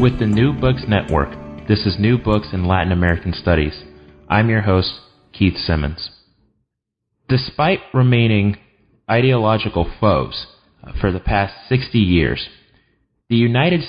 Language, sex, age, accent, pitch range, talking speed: English, male, 30-49, American, 95-120 Hz, 125 wpm